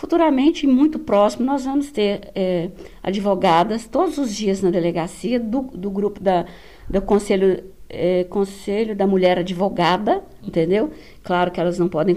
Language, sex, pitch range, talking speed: Portuguese, female, 175-210 Hz, 135 wpm